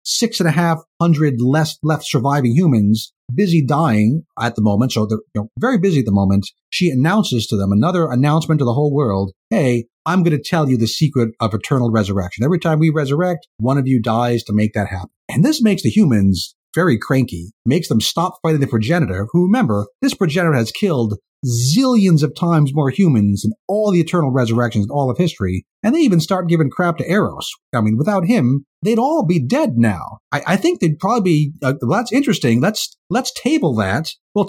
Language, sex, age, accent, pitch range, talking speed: English, male, 30-49, American, 115-175 Hz, 205 wpm